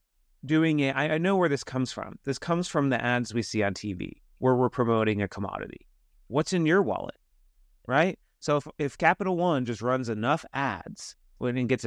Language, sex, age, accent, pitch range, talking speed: English, male, 30-49, American, 115-145 Hz, 190 wpm